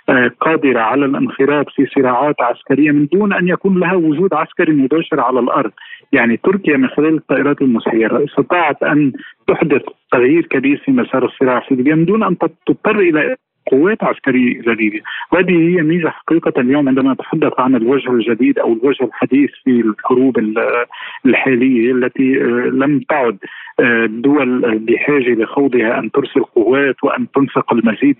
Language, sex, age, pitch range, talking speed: Arabic, male, 50-69, 125-175 Hz, 140 wpm